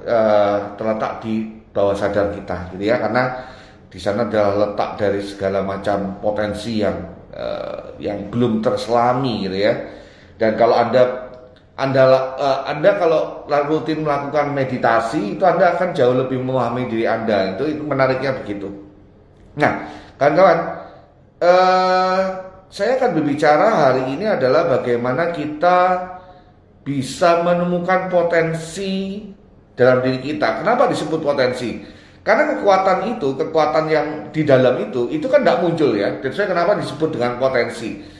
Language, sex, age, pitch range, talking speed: Indonesian, male, 30-49, 110-155 Hz, 130 wpm